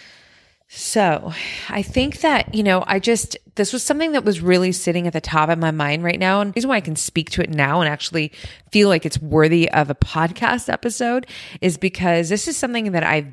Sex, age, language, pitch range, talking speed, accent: female, 20-39, English, 150-185 Hz, 225 wpm, American